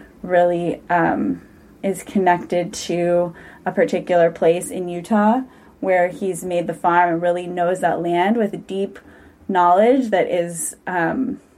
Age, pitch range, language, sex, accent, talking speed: 20-39, 175-215 Hz, English, female, American, 140 wpm